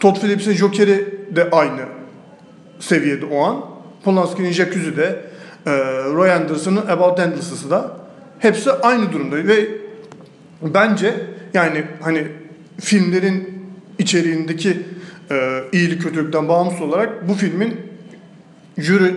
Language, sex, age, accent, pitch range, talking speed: Turkish, male, 40-59, native, 160-200 Hz, 105 wpm